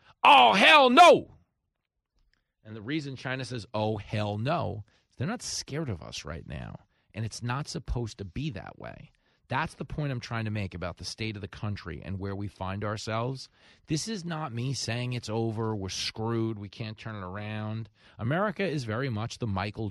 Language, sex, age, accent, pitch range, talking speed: English, male, 40-59, American, 110-145 Hz, 195 wpm